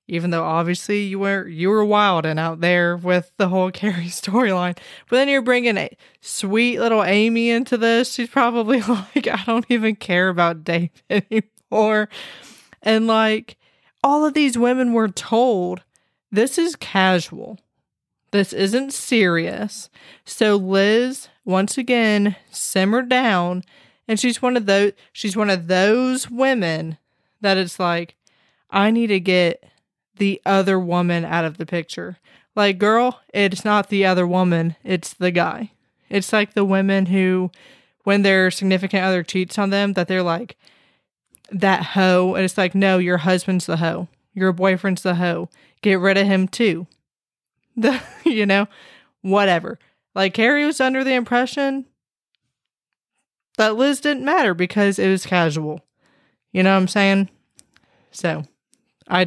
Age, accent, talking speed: 20-39, American, 150 wpm